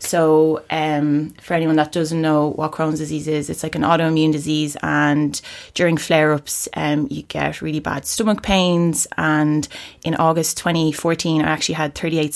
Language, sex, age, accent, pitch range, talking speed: English, female, 20-39, Irish, 155-175 Hz, 160 wpm